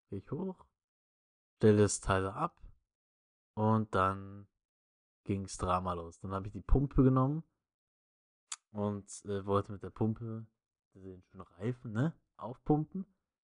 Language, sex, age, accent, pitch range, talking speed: German, male, 20-39, German, 100-125 Hz, 125 wpm